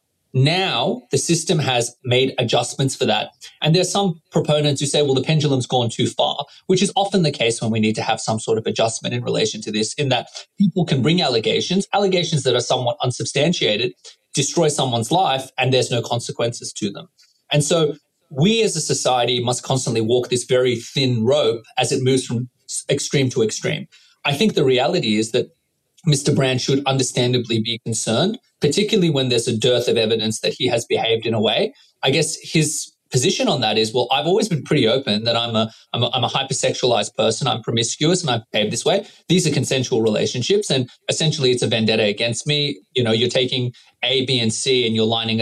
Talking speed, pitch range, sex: 205 wpm, 120-155 Hz, male